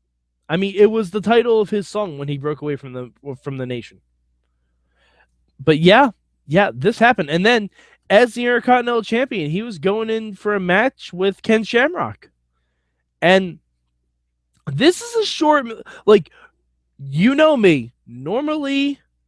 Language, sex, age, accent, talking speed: English, male, 20-39, American, 155 wpm